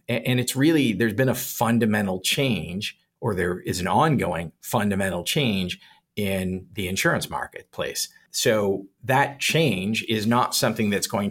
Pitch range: 95-120 Hz